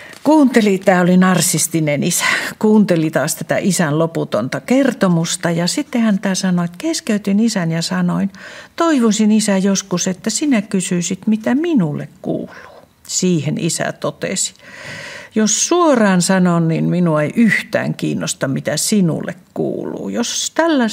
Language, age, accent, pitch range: Finnish, 60-79, native, 170-220 Hz